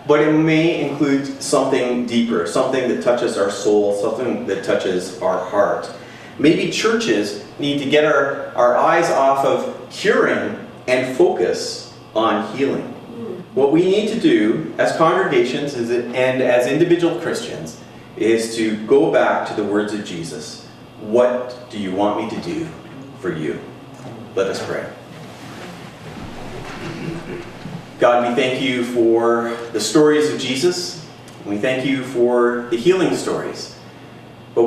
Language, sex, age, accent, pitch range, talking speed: English, male, 30-49, American, 115-140 Hz, 140 wpm